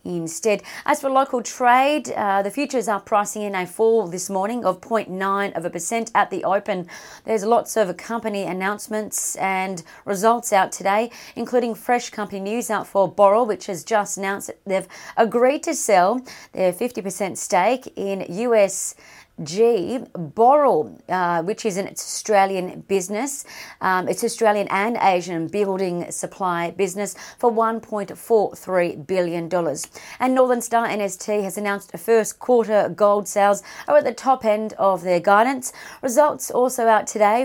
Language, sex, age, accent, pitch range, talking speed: English, female, 40-59, Australian, 185-225 Hz, 150 wpm